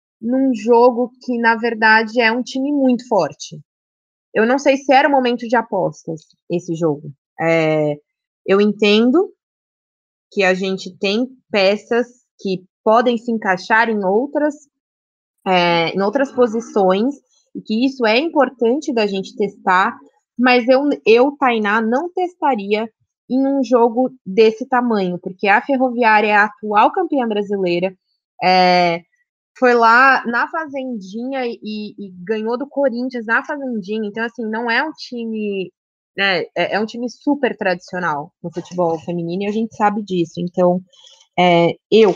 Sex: female